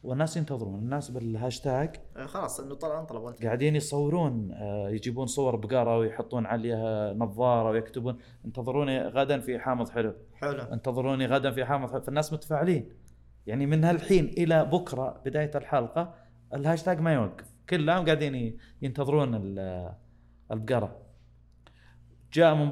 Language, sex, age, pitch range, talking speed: Arabic, male, 30-49, 110-150 Hz, 120 wpm